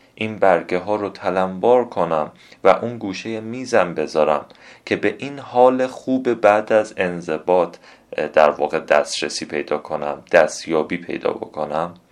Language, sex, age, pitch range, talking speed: Persian, male, 30-49, 95-120 Hz, 135 wpm